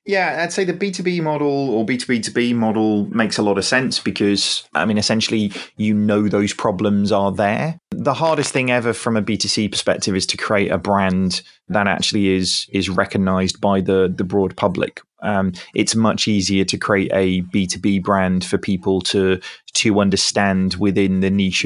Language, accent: English, British